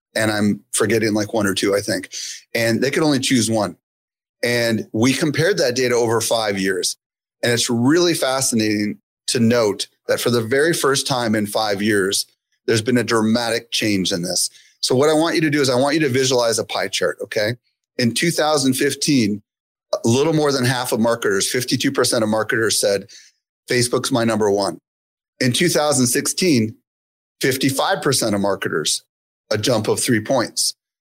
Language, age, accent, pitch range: English, 30-49, American, 115-140 Hz